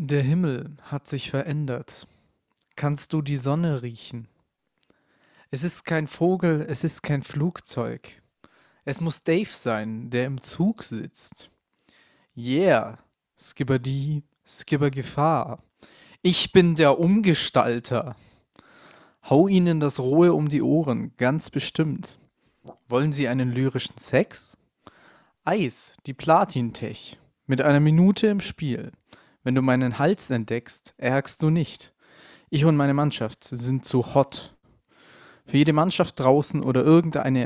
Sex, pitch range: male, 125-160 Hz